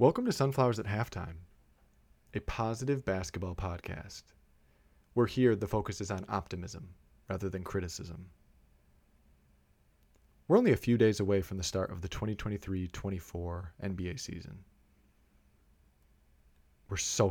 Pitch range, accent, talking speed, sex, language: 85-115 Hz, American, 120 wpm, male, English